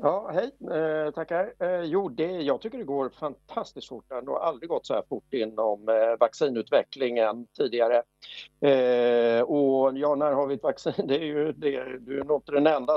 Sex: male